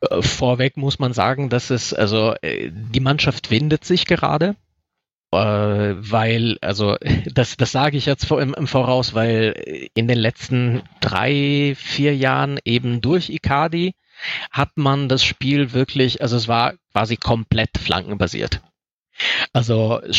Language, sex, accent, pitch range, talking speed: German, male, German, 115-145 Hz, 130 wpm